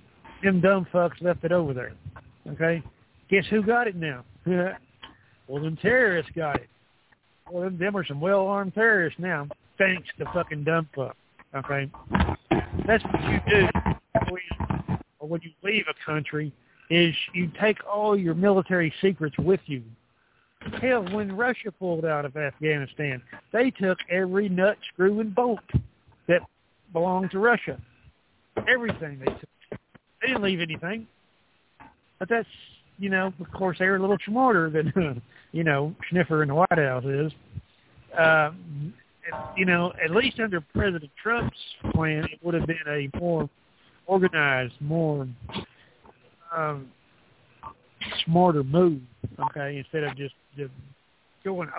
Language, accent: English, American